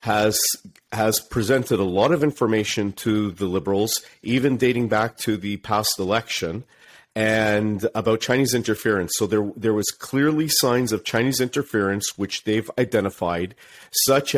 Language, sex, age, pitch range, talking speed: English, male, 40-59, 105-125 Hz, 140 wpm